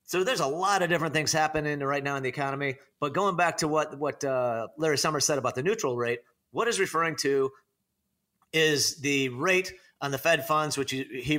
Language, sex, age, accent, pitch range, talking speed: English, male, 30-49, American, 125-150 Hz, 210 wpm